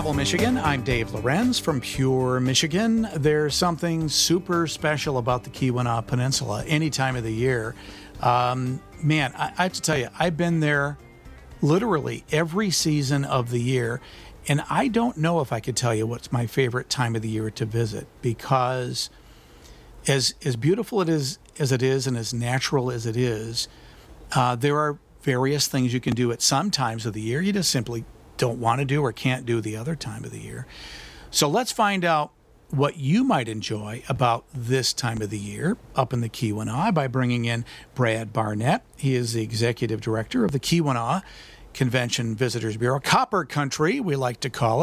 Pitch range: 115-155 Hz